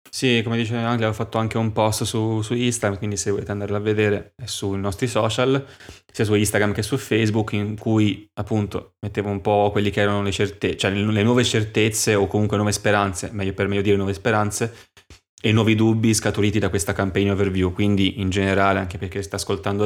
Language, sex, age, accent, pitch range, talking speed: Italian, male, 20-39, native, 95-110 Hz, 205 wpm